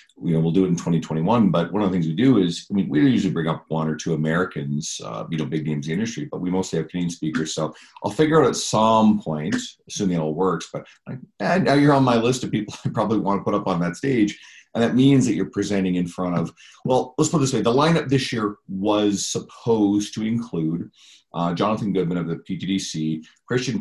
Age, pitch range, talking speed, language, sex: 40-59, 80-100 Hz, 250 wpm, English, male